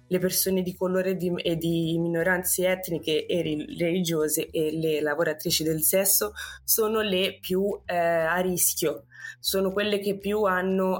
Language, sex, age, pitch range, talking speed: Italian, female, 20-39, 165-205 Hz, 140 wpm